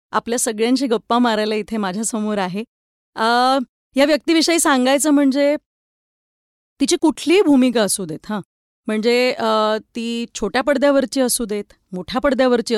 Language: Marathi